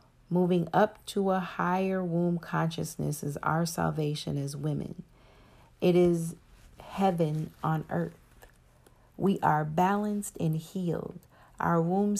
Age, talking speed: 40-59, 120 wpm